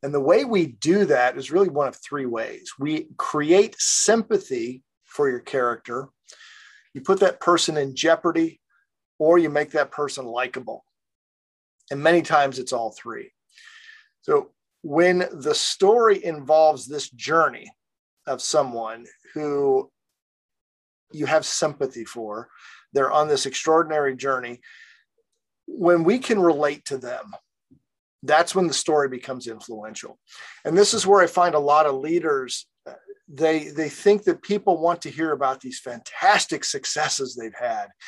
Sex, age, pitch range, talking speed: male, 40-59, 135-200 Hz, 145 wpm